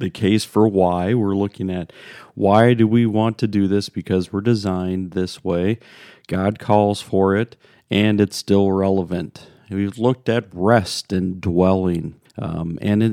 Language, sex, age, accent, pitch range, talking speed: English, male, 40-59, American, 95-115 Hz, 160 wpm